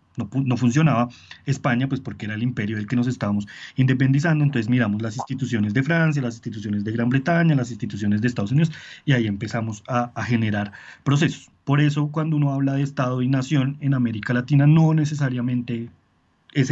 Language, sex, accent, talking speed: Spanish, male, Colombian, 185 wpm